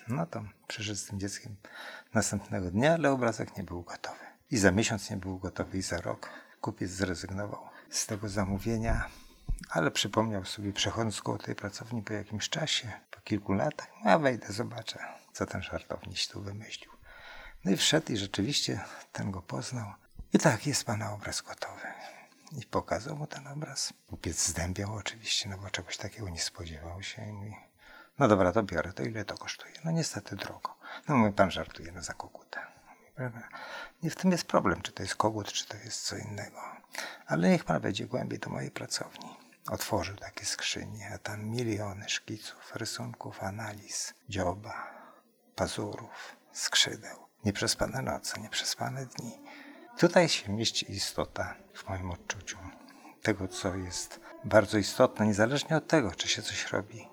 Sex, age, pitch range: male, 50-69, 100-120 Hz